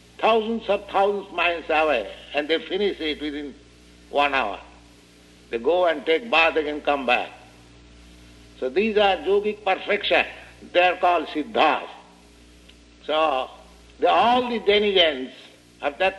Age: 60-79